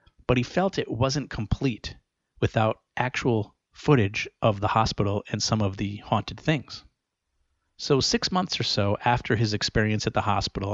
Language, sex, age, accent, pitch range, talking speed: English, male, 40-59, American, 100-125 Hz, 160 wpm